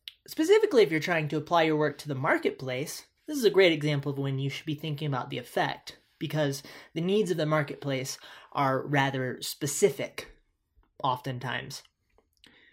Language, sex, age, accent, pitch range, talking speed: English, male, 20-39, American, 135-175 Hz, 165 wpm